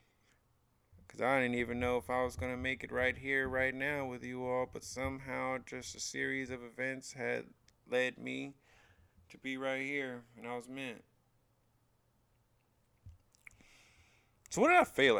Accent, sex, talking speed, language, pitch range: American, male, 160 wpm, English, 95-130 Hz